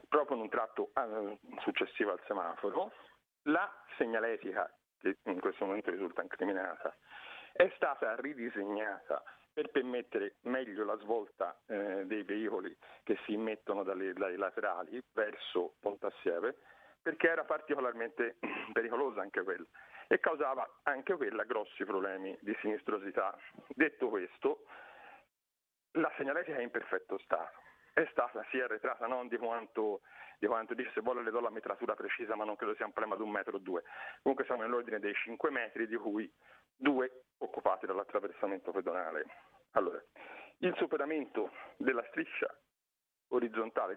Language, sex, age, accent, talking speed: Italian, male, 50-69, native, 140 wpm